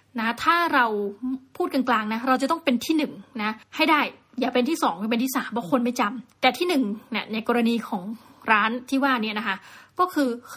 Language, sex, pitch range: Thai, female, 220-270 Hz